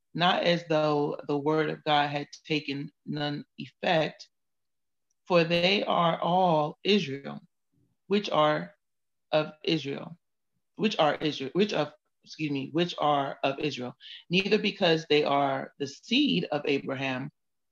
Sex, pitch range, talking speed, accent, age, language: female, 145-170 Hz, 130 wpm, American, 30-49, English